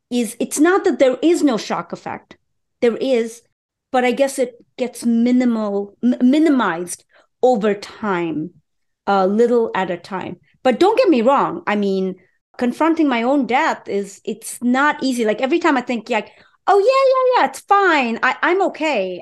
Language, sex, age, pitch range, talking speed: English, female, 30-49, 195-255 Hz, 175 wpm